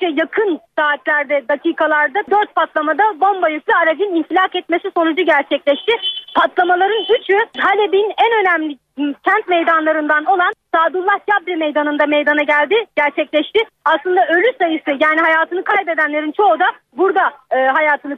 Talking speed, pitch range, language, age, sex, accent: 120 wpm, 310-395 Hz, Turkish, 40-59, female, native